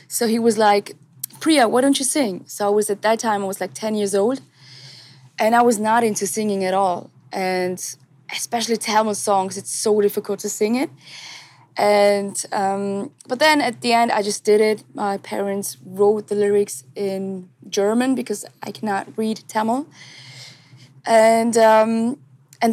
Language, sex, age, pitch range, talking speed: English, female, 20-39, 180-215 Hz, 170 wpm